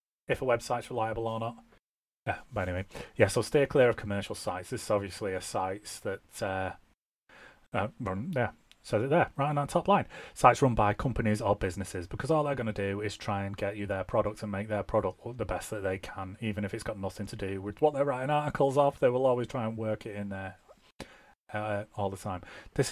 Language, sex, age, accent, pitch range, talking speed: English, male, 30-49, British, 100-115 Hz, 235 wpm